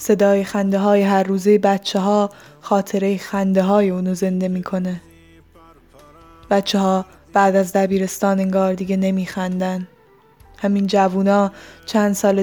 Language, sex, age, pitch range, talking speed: Persian, female, 10-29, 190-200 Hz, 120 wpm